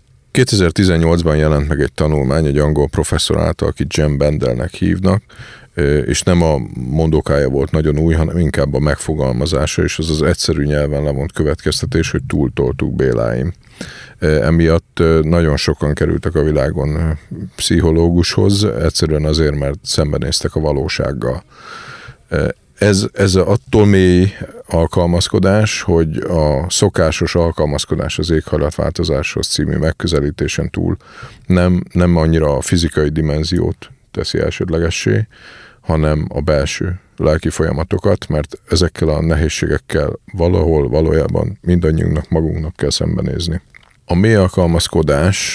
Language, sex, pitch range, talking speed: Hungarian, male, 75-90 Hz, 115 wpm